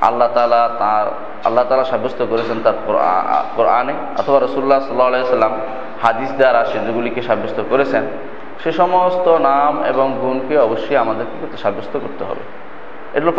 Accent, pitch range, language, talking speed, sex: native, 125-155 Hz, Bengali, 125 wpm, male